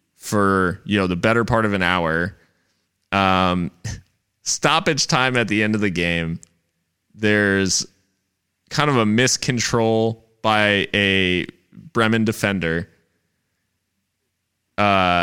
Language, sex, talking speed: English, male, 110 wpm